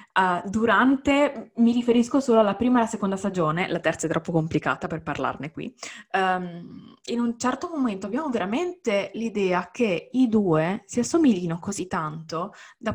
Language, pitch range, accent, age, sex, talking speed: Italian, 175-225 Hz, native, 20-39, female, 155 wpm